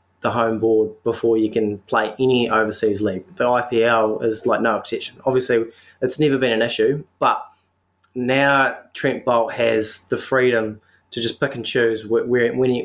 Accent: Australian